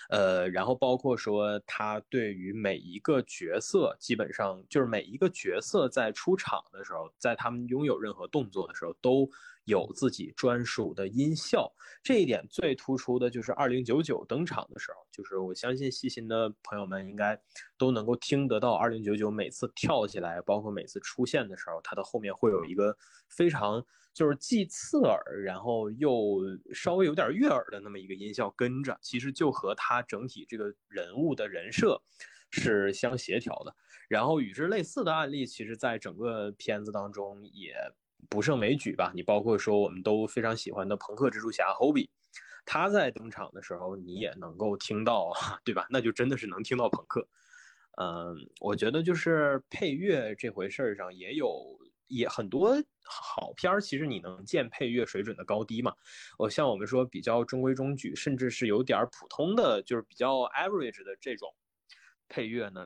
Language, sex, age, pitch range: Chinese, male, 20-39, 105-135 Hz